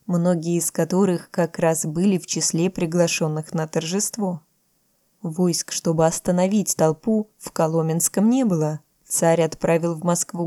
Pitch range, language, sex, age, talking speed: 165-195 Hz, Russian, female, 20-39, 130 wpm